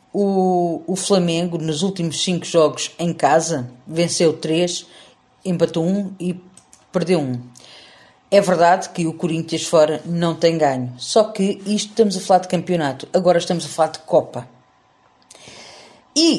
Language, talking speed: Portuguese, 145 wpm